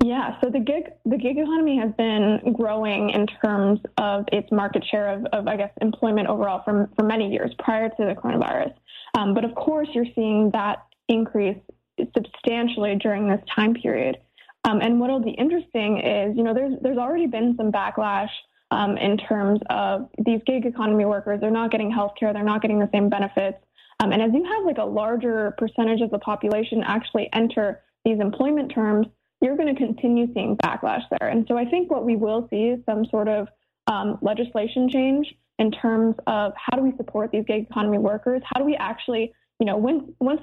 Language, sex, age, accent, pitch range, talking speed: English, female, 20-39, American, 210-245 Hz, 200 wpm